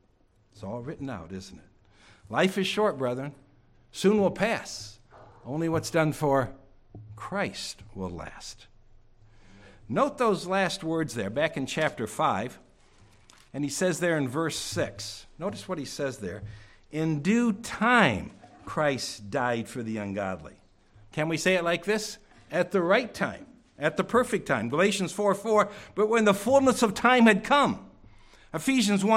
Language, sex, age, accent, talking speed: English, male, 60-79, American, 155 wpm